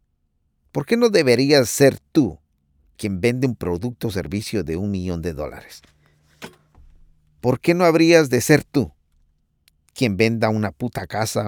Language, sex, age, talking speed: English, male, 50-69, 150 wpm